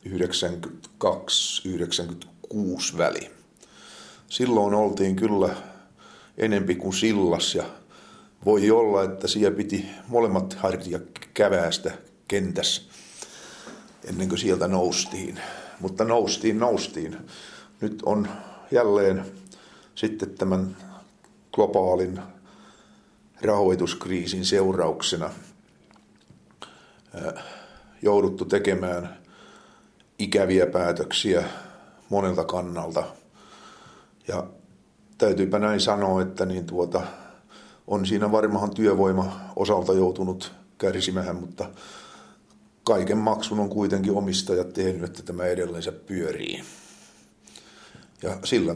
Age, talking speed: 50-69, 80 wpm